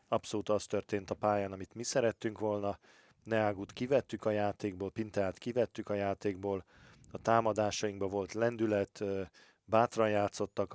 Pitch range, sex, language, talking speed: 95-110 Hz, male, Hungarian, 130 wpm